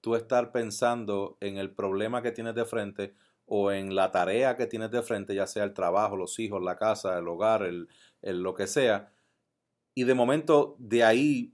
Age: 30-49